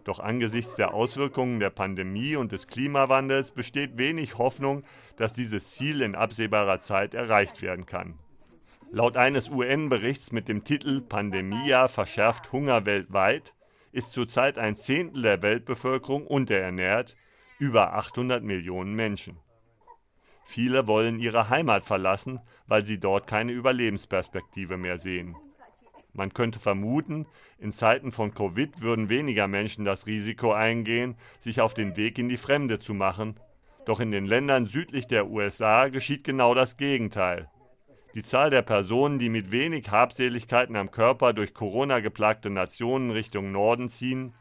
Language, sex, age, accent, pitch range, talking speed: German, male, 40-59, German, 105-130 Hz, 140 wpm